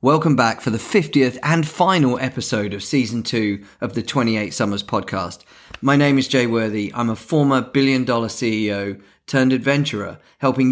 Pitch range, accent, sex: 110-135 Hz, British, male